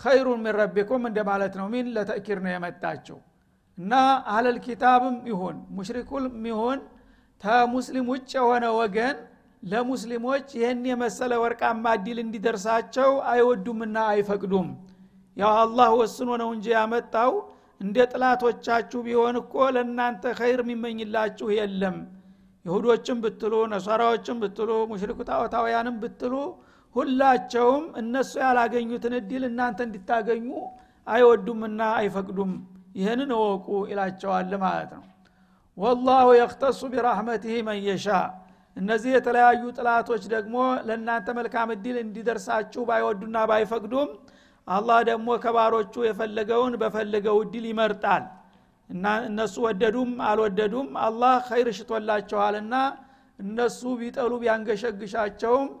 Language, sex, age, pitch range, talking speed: Amharic, male, 60-79, 215-245 Hz, 100 wpm